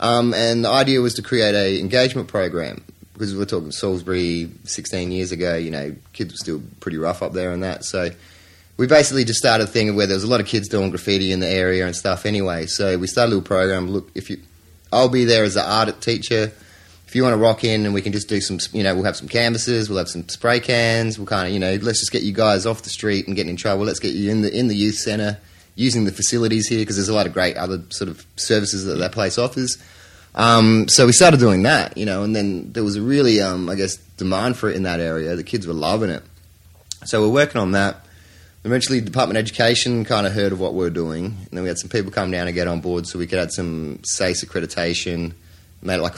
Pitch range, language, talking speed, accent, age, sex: 90-110 Hz, English, 260 wpm, Australian, 30-49, male